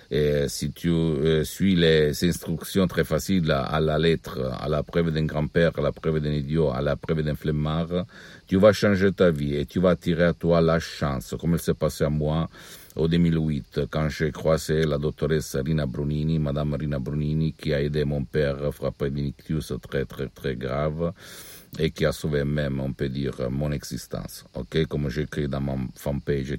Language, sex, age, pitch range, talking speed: Italian, male, 50-69, 70-80 Hz, 195 wpm